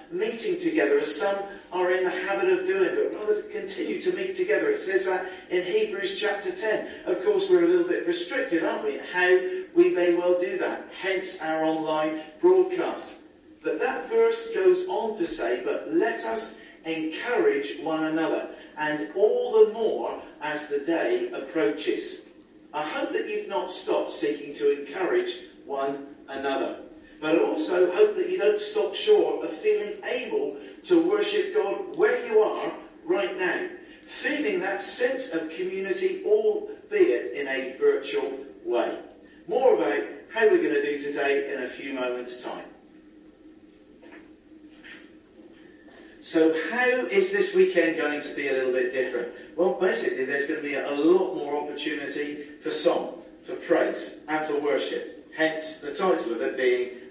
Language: English